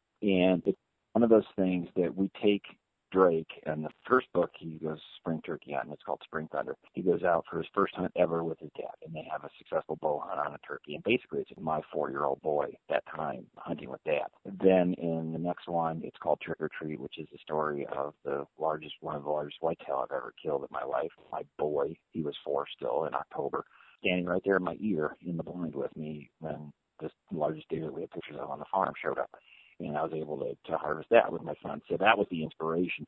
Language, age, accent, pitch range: English, 40-59, American, 80-95 Hz